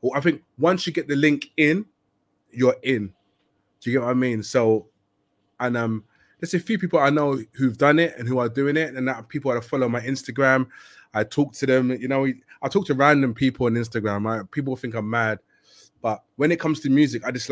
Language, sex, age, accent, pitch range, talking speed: English, male, 20-39, British, 115-145 Hz, 225 wpm